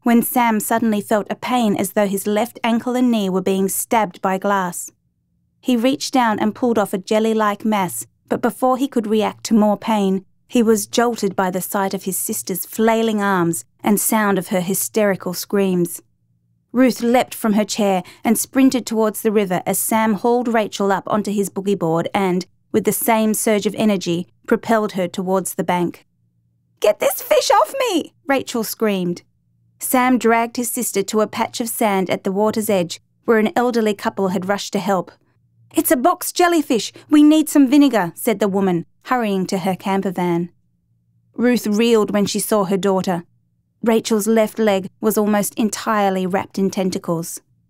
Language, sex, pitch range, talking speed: English, female, 190-230 Hz, 180 wpm